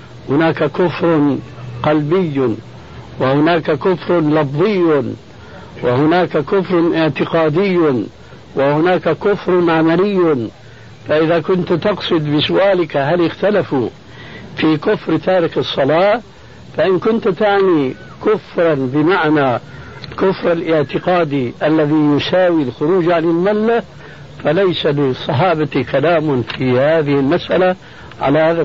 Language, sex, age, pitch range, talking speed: Arabic, male, 60-79, 150-185 Hz, 90 wpm